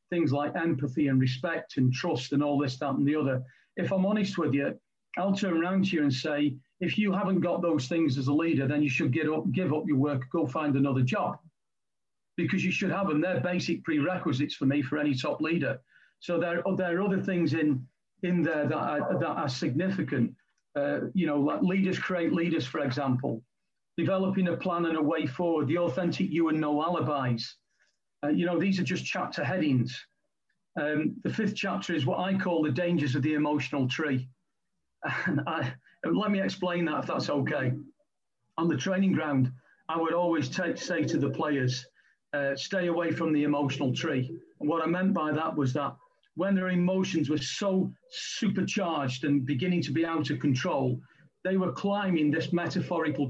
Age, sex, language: 40-59, male, English